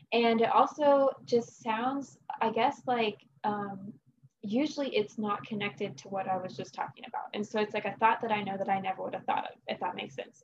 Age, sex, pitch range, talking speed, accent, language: 20-39, female, 185-225 Hz, 230 wpm, American, English